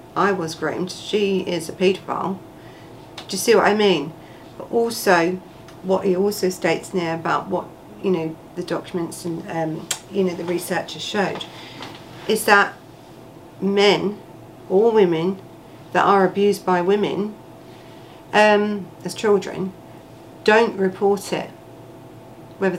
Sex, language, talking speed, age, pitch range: female, English, 135 wpm, 40-59, 170-195 Hz